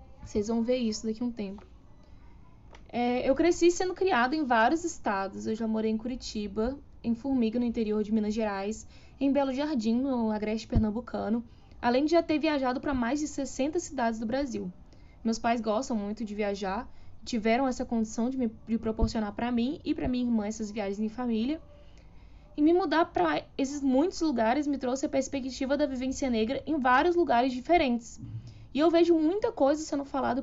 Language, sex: Portuguese, female